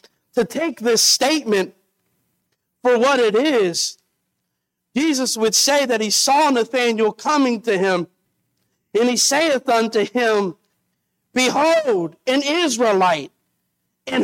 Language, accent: English, American